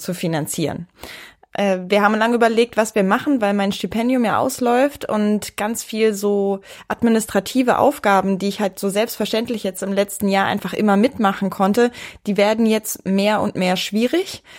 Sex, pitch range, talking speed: female, 185-215 Hz, 165 wpm